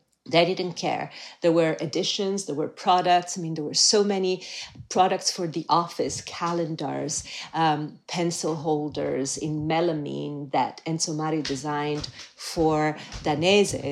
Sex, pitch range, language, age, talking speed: female, 155-190 Hz, English, 40-59, 135 wpm